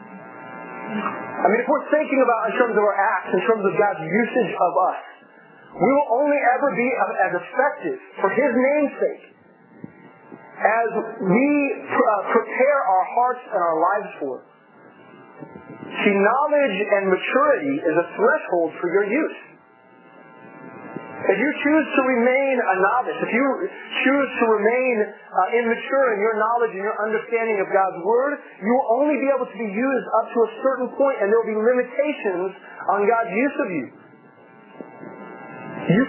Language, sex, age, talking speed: English, male, 30-49, 160 wpm